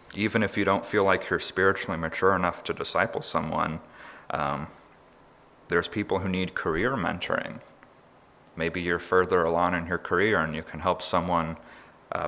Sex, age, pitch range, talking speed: male, 30-49, 85-95 Hz, 160 wpm